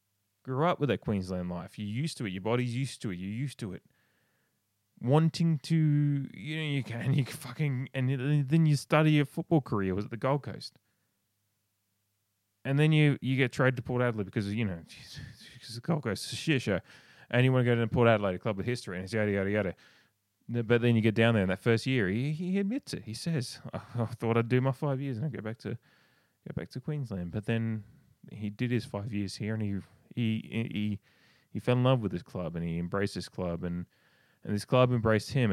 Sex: male